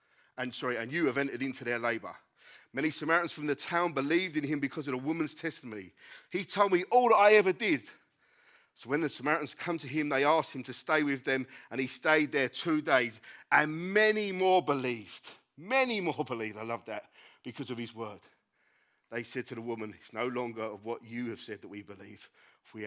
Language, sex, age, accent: English, male, 40-59, British